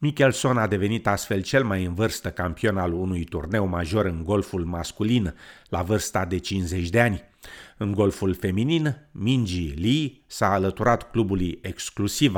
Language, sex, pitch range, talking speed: Romanian, male, 90-115 Hz, 150 wpm